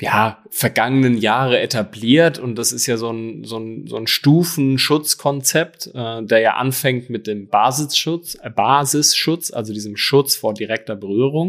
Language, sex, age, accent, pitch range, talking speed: German, male, 20-39, German, 110-140 Hz, 150 wpm